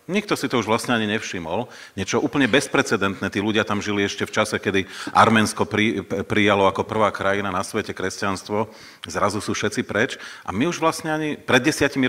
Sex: male